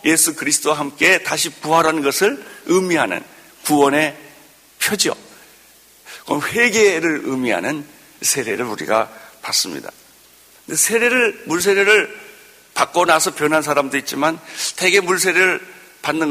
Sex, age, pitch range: male, 60-79, 145-230 Hz